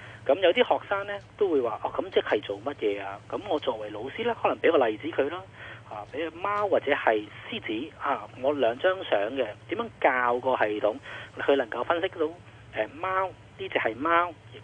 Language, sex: Chinese, male